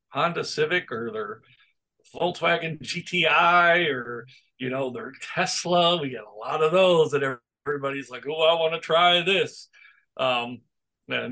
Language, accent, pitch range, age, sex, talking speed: English, American, 140-170 Hz, 50-69, male, 150 wpm